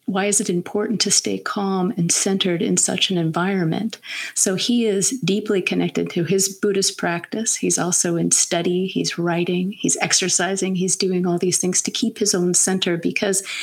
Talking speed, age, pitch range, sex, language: 180 wpm, 40-59, 180-215 Hz, female, English